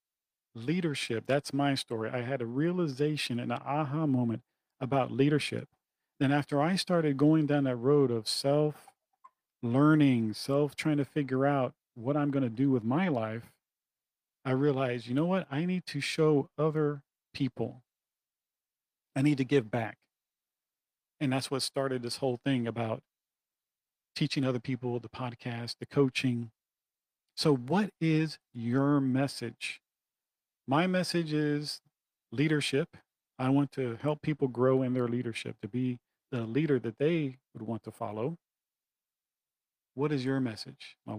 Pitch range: 120-150 Hz